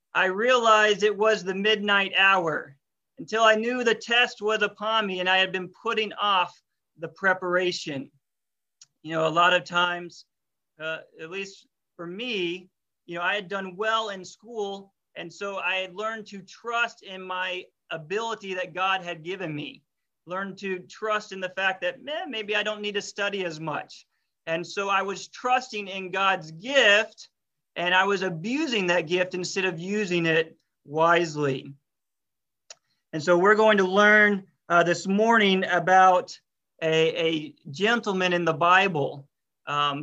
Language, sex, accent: English, male, American